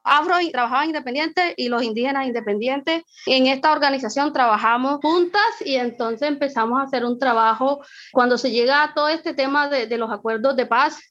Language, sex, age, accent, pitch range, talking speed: English, female, 20-39, American, 250-315 Hz, 175 wpm